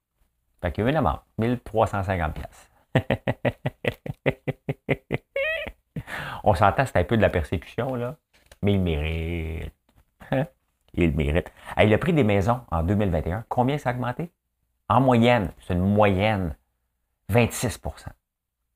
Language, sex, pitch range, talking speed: French, male, 70-100 Hz, 130 wpm